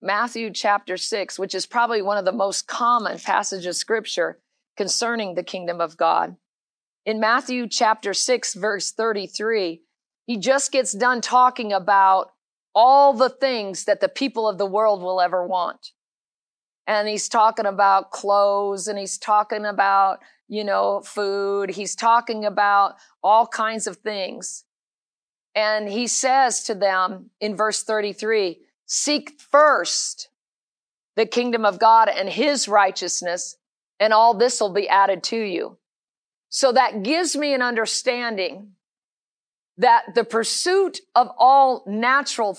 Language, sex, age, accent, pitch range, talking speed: English, female, 50-69, American, 200-255 Hz, 140 wpm